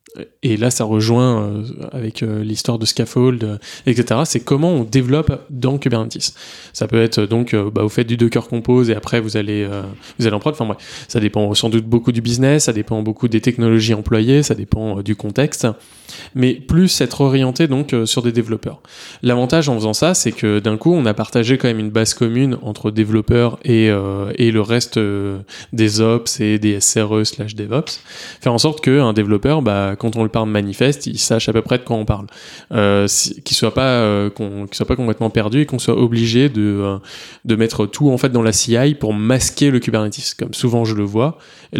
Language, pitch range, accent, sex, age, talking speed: French, 110-125 Hz, French, male, 20-39, 210 wpm